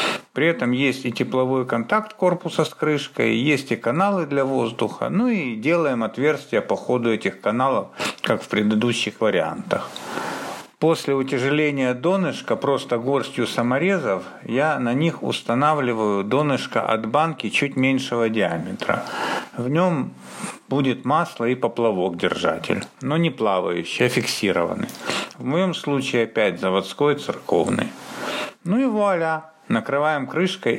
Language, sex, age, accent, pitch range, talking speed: Russian, male, 50-69, native, 120-170 Hz, 125 wpm